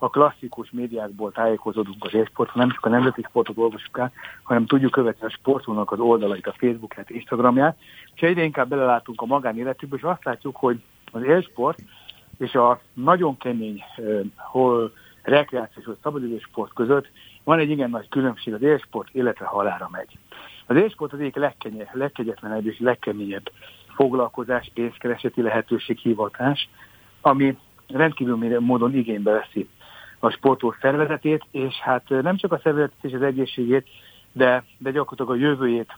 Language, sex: Hungarian, male